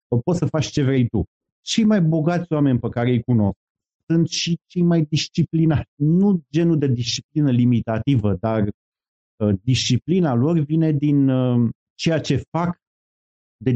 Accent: native